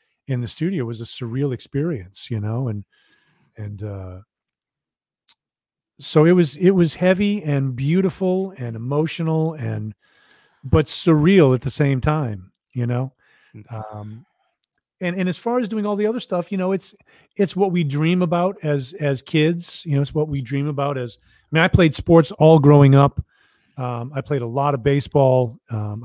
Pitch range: 130-170 Hz